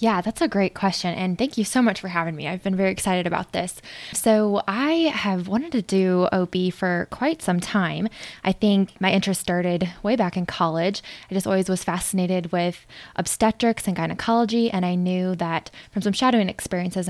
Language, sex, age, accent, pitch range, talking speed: English, female, 20-39, American, 175-195 Hz, 195 wpm